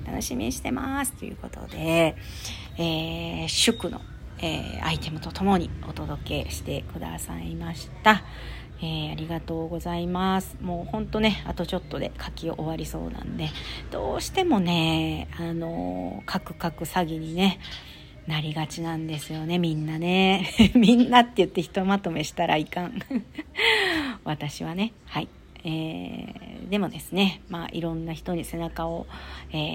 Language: Japanese